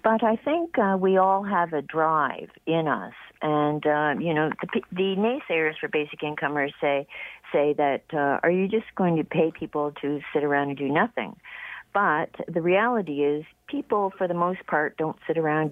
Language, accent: English, American